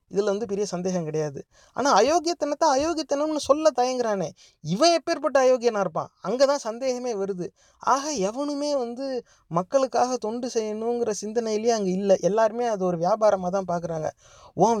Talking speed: 140 wpm